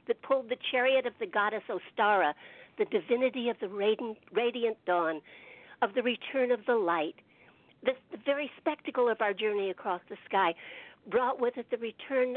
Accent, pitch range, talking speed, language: American, 210-270 Hz, 170 wpm, English